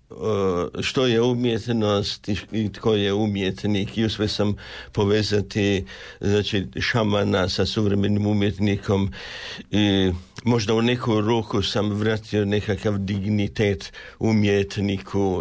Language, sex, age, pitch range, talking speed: Croatian, male, 60-79, 100-115 Hz, 100 wpm